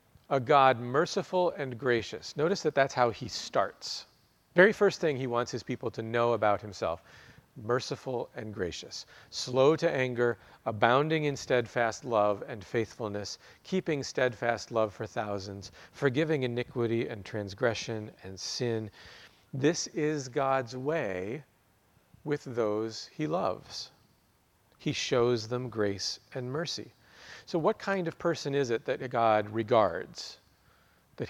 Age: 40-59